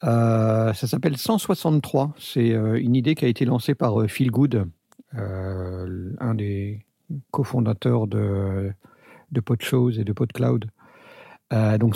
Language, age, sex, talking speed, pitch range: French, 50-69, male, 130 wpm, 125-160 Hz